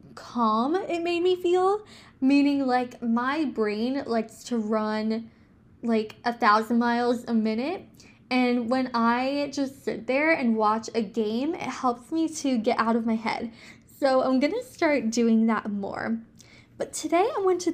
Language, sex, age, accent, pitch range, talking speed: English, female, 10-29, American, 230-280 Hz, 165 wpm